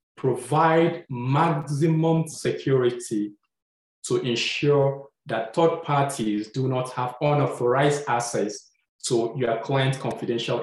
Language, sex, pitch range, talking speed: English, male, 120-150 Hz, 95 wpm